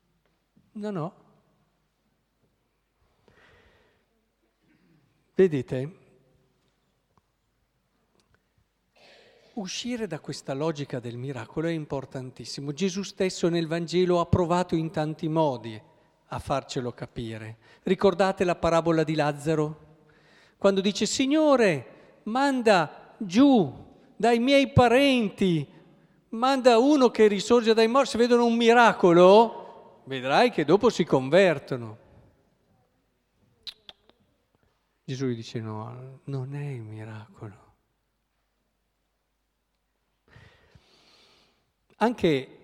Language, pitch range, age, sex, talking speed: Italian, 135-200 Hz, 50-69, male, 85 wpm